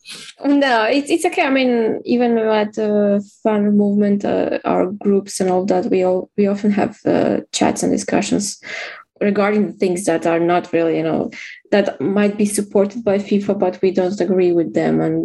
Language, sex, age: English, female, 20-39